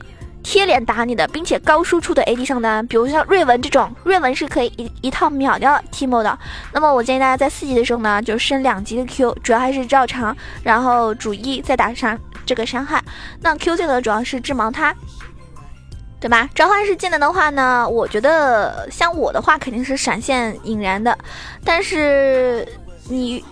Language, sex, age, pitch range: Chinese, female, 20-39, 235-295 Hz